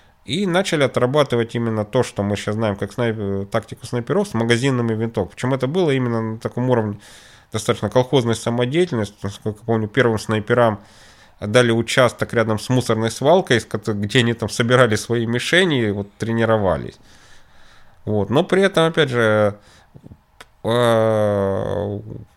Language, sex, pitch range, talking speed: Russian, male, 105-125 Hz, 130 wpm